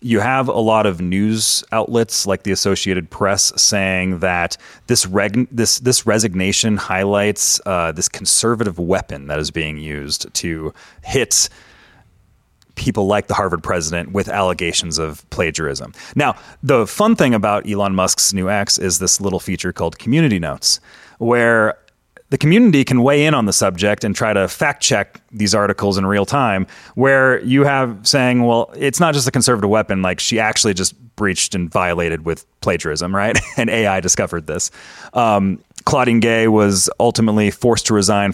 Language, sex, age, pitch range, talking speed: English, male, 30-49, 90-115 Hz, 165 wpm